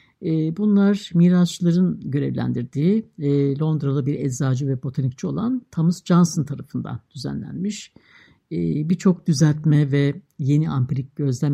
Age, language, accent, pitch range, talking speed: 60-79, Turkish, native, 140-190 Hz, 100 wpm